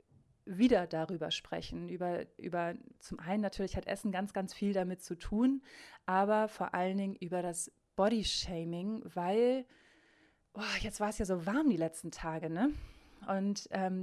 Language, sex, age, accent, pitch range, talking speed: German, female, 20-39, German, 180-220 Hz, 160 wpm